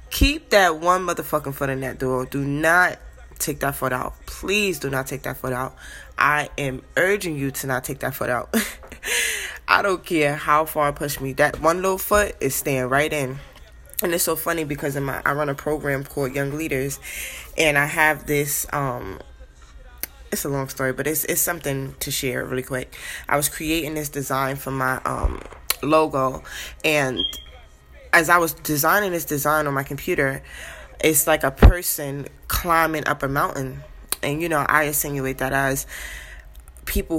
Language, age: English, 20-39